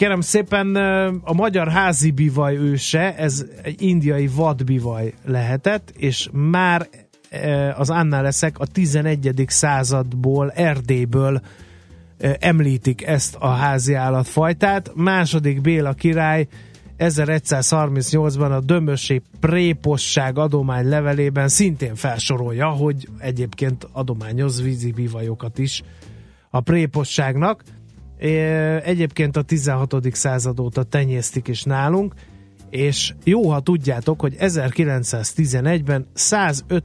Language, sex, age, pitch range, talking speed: Hungarian, male, 30-49, 125-160 Hz, 95 wpm